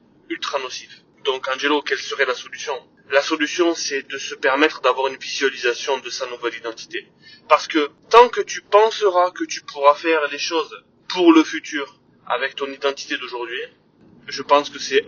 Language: French